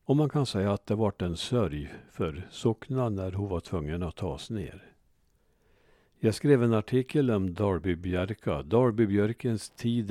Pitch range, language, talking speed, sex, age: 100-125 Hz, Swedish, 155 wpm, male, 60-79